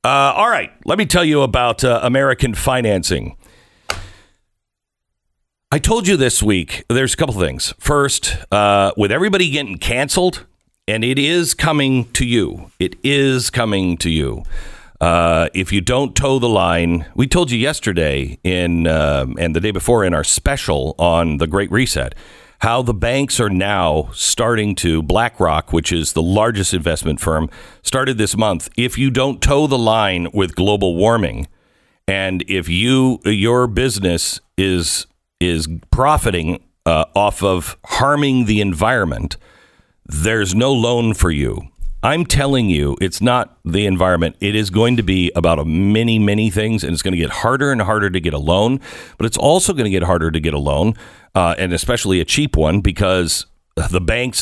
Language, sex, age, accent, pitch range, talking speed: English, male, 50-69, American, 85-125 Hz, 170 wpm